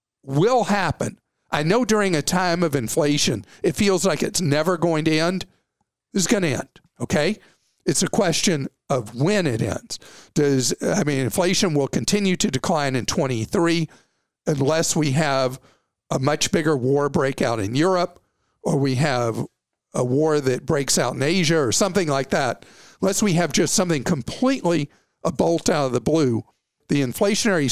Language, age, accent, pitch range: English, 50-69, American, 145-185 Hz